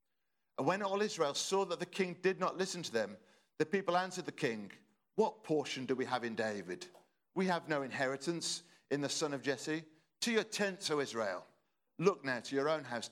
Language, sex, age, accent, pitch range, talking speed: English, male, 50-69, British, 135-175 Hz, 205 wpm